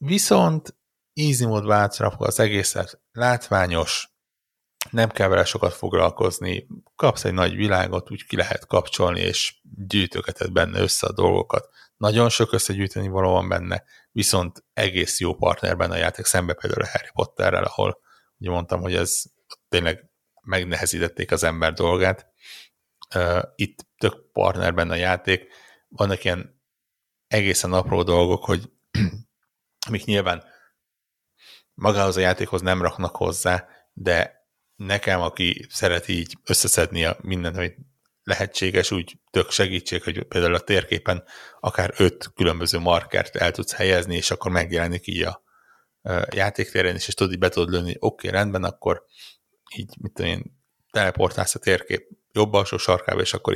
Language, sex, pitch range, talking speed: Hungarian, male, 90-105 Hz, 140 wpm